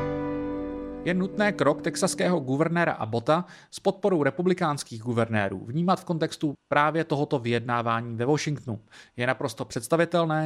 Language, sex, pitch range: English, male, 130-170 Hz